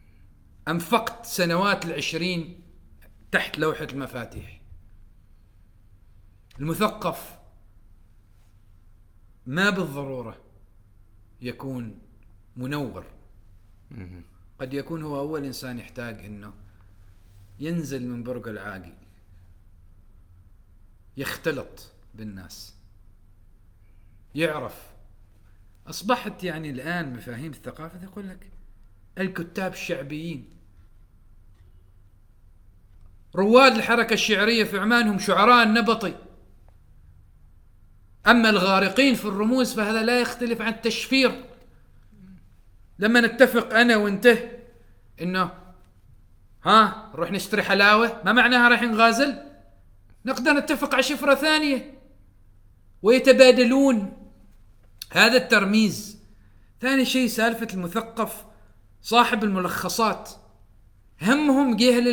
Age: 40-59